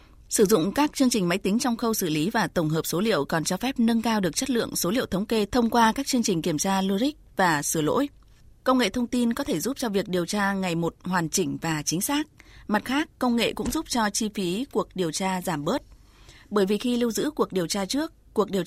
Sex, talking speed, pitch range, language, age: female, 265 wpm, 180-240 Hz, Vietnamese, 20-39